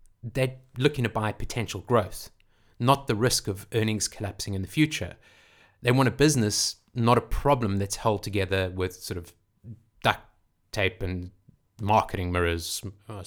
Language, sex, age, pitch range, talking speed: English, male, 30-49, 100-130 Hz, 155 wpm